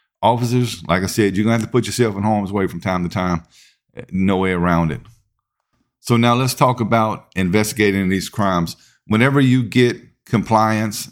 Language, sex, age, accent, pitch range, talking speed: English, male, 50-69, American, 90-110 Hz, 185 wpm